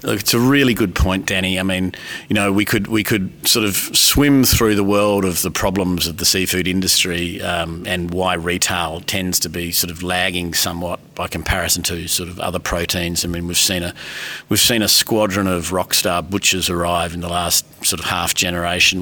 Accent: Australian